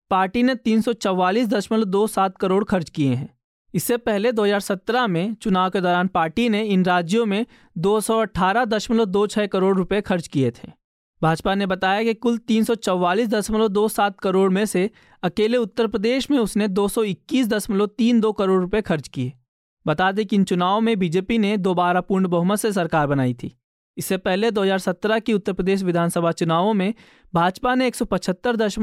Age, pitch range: 20-39, 185-220 Hz